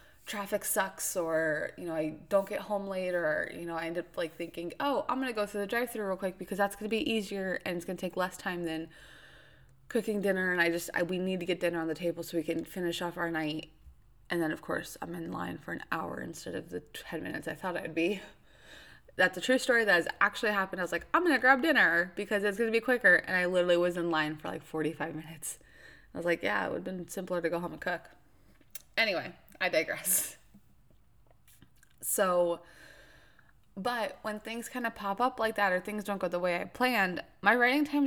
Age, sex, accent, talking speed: 20-39, female, American, 230 wpm